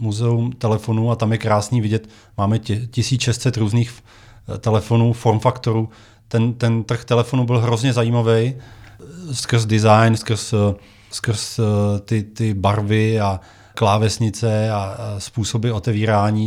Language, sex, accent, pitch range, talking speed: Czech, male, native, 110-125 Hz, 115 wpm